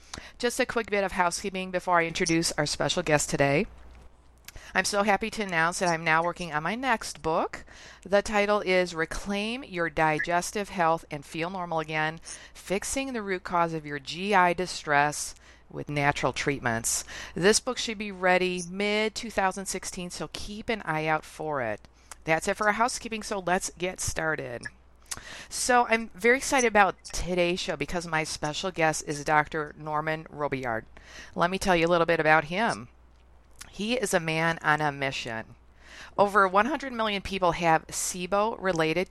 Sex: female